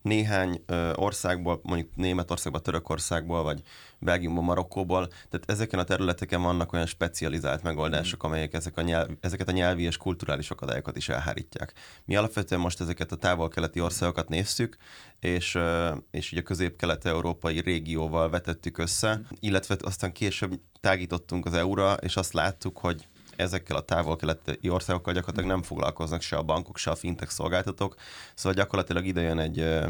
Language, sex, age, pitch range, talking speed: Hungarian, male, 20-39, 85-95 Hz, 145 wpm